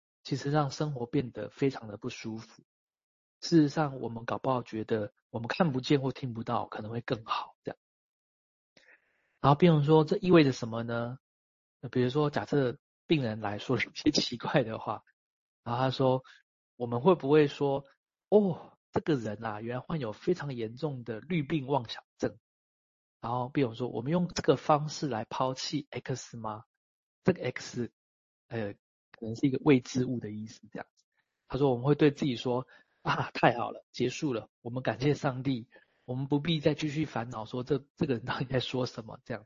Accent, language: native, Chinese